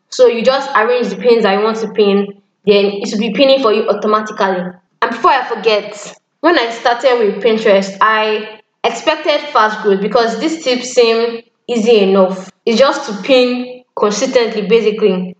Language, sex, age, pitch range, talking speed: English, female, 10-29, 200-240 Hz, 170 wpm